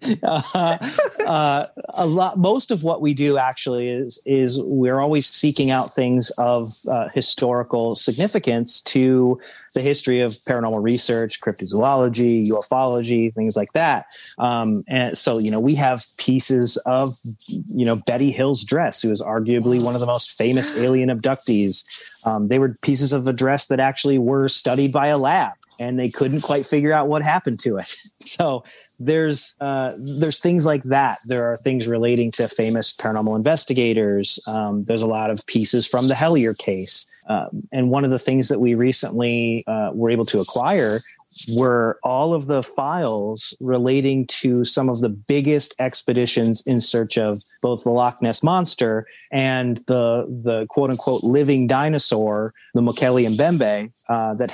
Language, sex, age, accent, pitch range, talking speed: English, male, 30-49, American, 115-135 Hz, 165 wpm